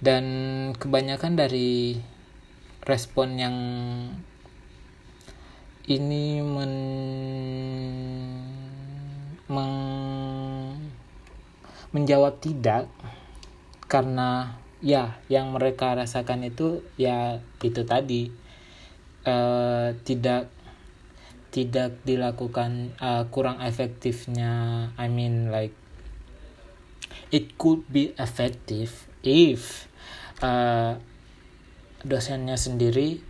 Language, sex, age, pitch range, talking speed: Indonesian, male, 20-39, 115-130 Hz, 65 wpm